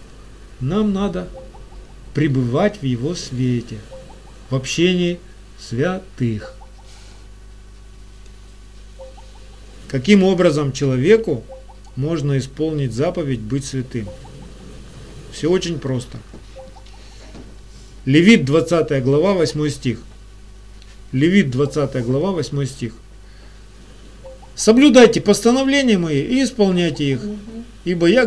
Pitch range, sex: 115-190 Hz, male